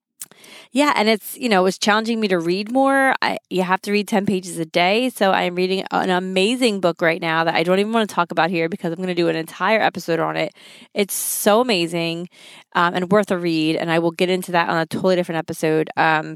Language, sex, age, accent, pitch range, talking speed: English, female, 30-49, American, 175-210 Hz, 250 wpm